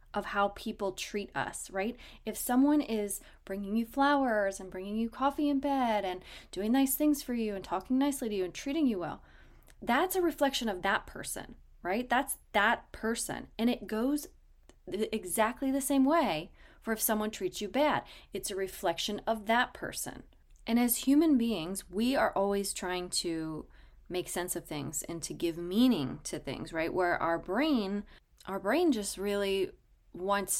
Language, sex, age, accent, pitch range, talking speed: English, female, 20-39, American, 175-235 Hz, 175 wpm